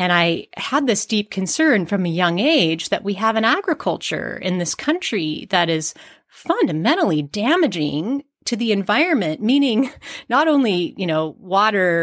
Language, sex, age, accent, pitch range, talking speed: English, female, 30-49, American, 170-225 Hz, 150 wpm